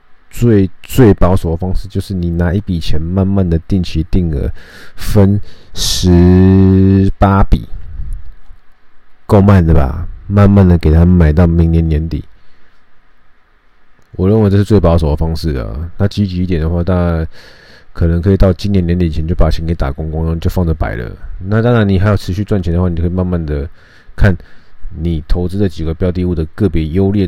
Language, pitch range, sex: Chinese, 80-100 Hz, male